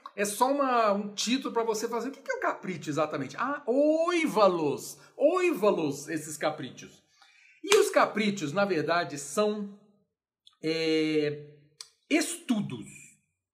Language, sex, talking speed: Portuguese, male, 125 wpm